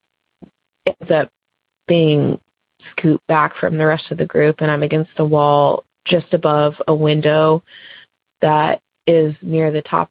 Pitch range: 155-175 Hz